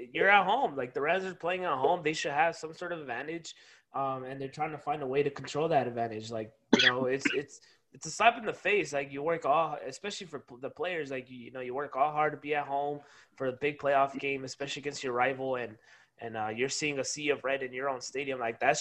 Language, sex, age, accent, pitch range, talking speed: English, male, 20-39, American, 130-170 Hz, 270 wpm